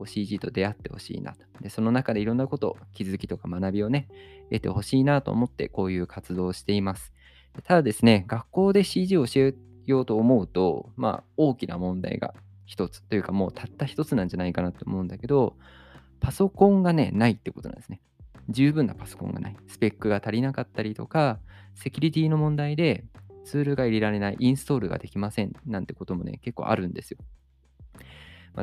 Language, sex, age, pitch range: Japanese, male, 20-39, 95-130 Hz